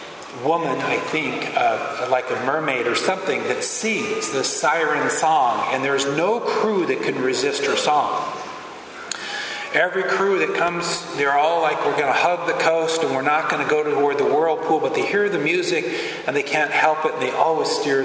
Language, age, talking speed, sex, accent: English, 40-59, 195 wpm, male, American